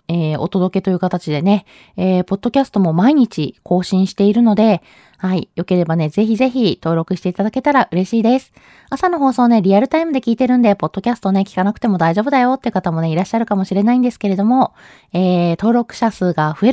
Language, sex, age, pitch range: Japanese, female, 20-39, 180-255 Hz